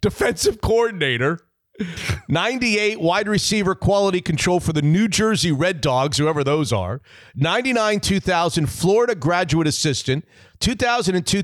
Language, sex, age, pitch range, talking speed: English, male, 40-59, 140-190 Hz, 115 wpm